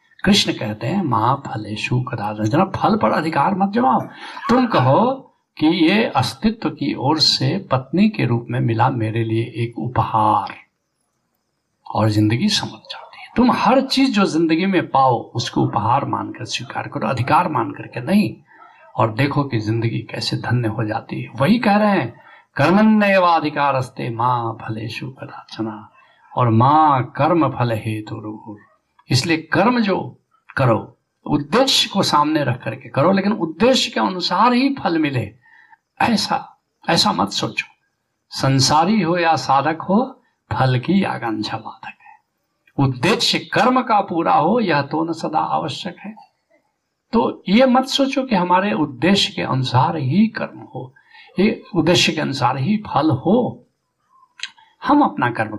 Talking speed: 145 wpm